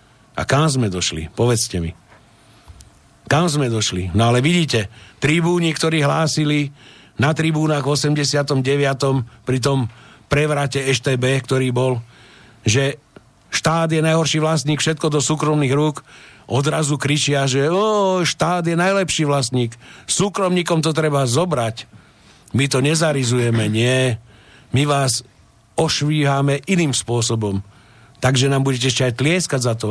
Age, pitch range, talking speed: 50-69, 115-150 Hz, 125 wpm